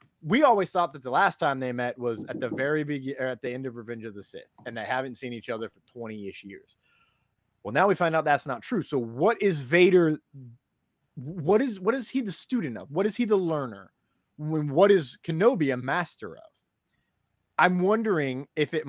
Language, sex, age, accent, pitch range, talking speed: English, male, 20-39, American, 120-175 Hz, 215 wpm